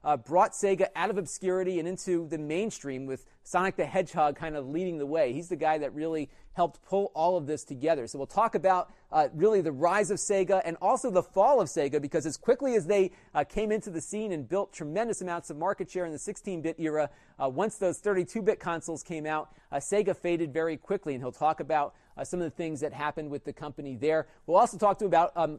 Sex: male